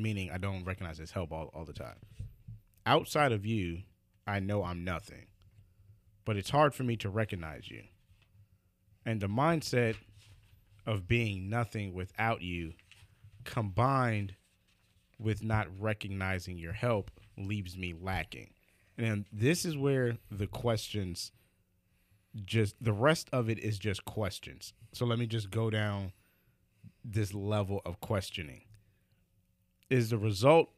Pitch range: 95-115 Hz